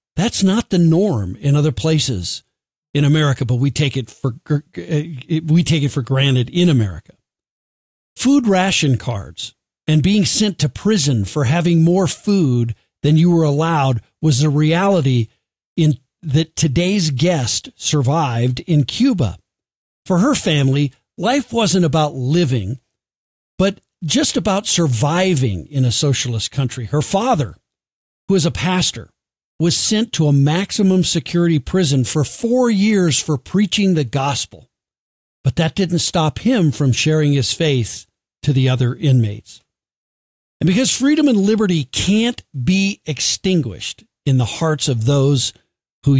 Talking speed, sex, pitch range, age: 140 wpm, male, 130-180 Hz, 50-69